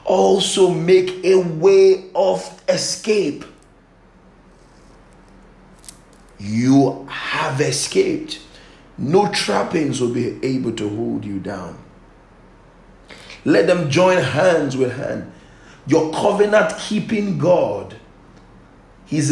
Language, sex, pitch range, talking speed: English, male, 130-195 Hz, 90 wpm